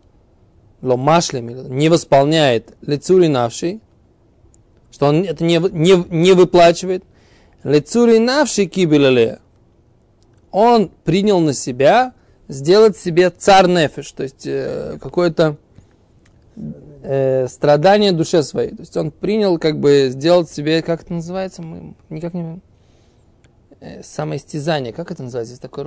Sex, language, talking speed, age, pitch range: male, Russian, 115 wpm, 20-39, 115-165 Hz